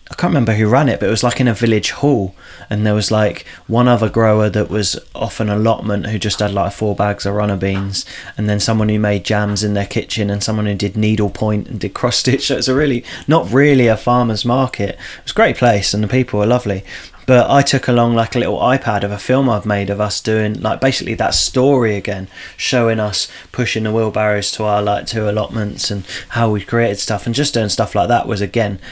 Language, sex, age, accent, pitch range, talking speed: English, male, 20-39, British, 105-120 Hz, 245 wpm